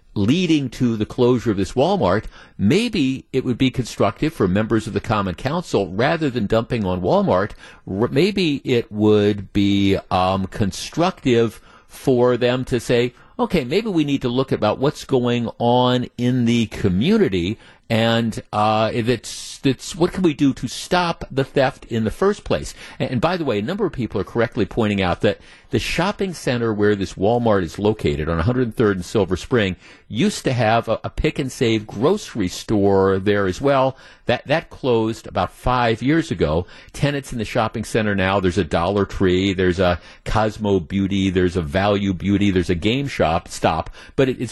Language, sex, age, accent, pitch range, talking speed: English, male, 50-69, American, 100-130 Hz, 175 wpm